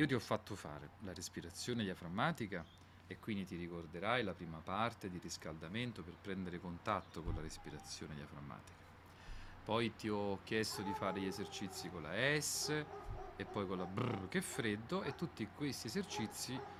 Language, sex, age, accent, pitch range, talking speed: Italian, male, 40-59, native, 95-125 Hz, 170 wpm